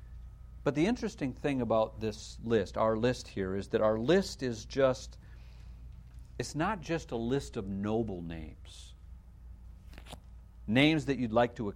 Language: English